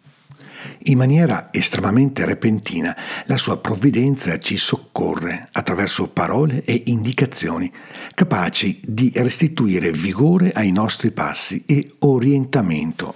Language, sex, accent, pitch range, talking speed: Italian, male, native, 105-145 Hz, 100 wpm